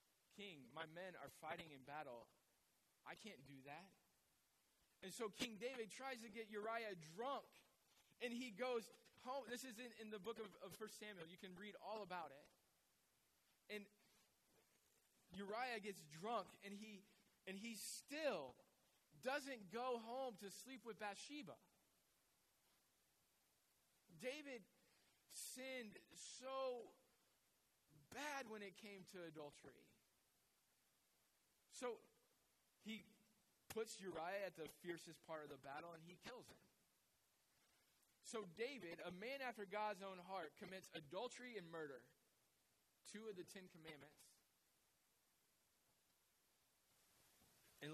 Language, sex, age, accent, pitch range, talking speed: English, male, 20-39, American, 160-230 Hz, 120 wpm